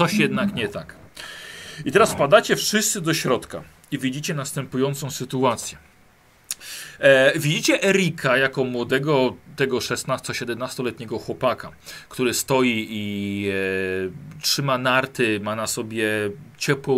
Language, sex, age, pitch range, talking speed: Polish, male, 40-59, 110-155 Hz, 115 wpm